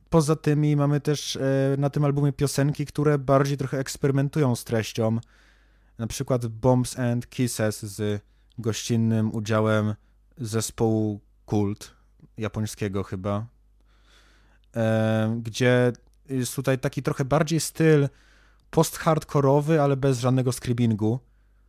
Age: 20-39